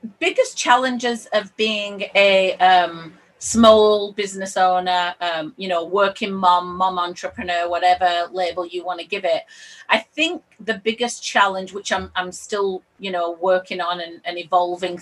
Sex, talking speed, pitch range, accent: female, 155 wpm, 180-220 Hz, British